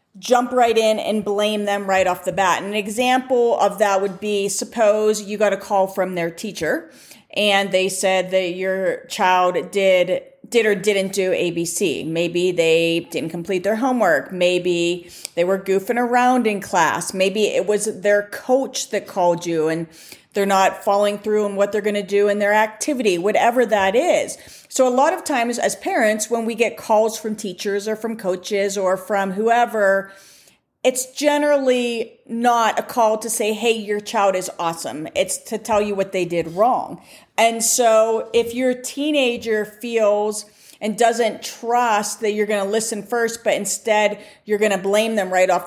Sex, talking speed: female, 180 wpm